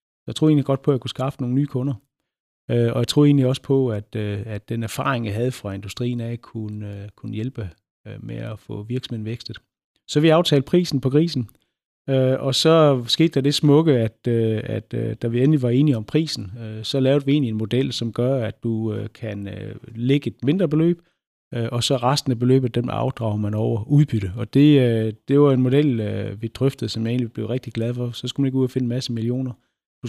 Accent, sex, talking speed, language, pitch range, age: native, male, 210 wpm, Danish, 110-140 Hz, 30-49